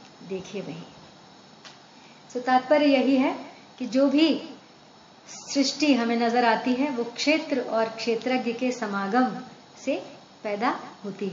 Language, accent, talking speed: Hindi, native, 115 wpm